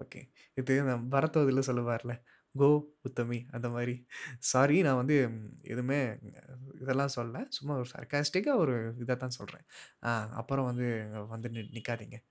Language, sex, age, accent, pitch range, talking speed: Tamil, male, 20-39, native, 120-145 Hz, 125 wpm